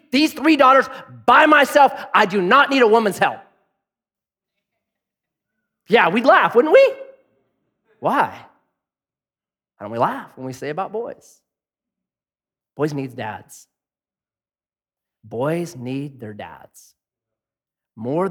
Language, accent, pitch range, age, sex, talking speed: English, American, 130-195 Hz, 30-49, male, 115 wpm